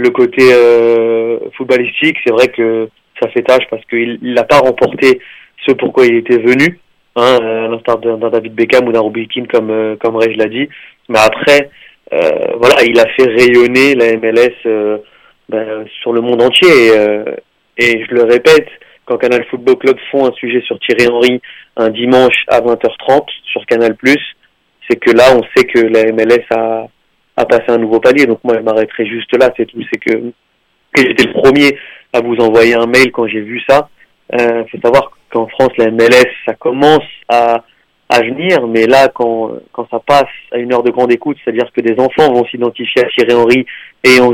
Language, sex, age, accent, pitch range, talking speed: French, male, 20-39, French, 115-130 Hz, 200 wpm